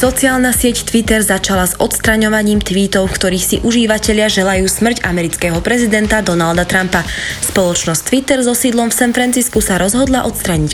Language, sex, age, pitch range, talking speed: English, female, 20-39, 185-245 Hz, 150 wpm